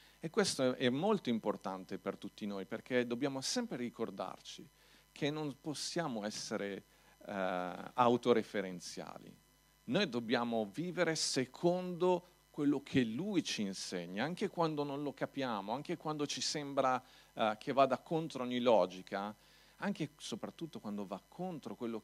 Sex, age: male, 40-59